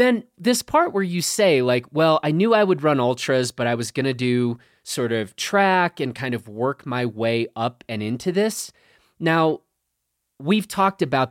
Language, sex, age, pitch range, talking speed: English, male, 30-49, 115-150 Hz, 195 wpm